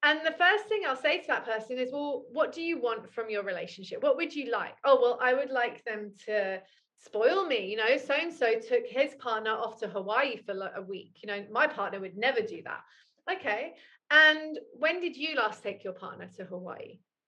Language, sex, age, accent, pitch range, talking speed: English, female, 30-49, British, 220-315 Hz, 220 wpm